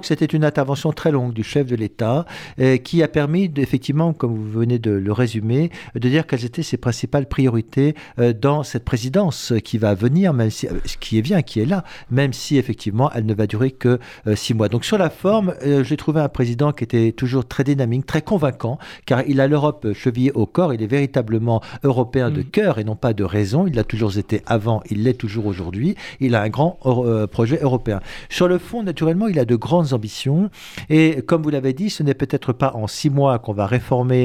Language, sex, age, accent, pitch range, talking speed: French, male, 50-69, French, 115-155 Hz, 230 wpm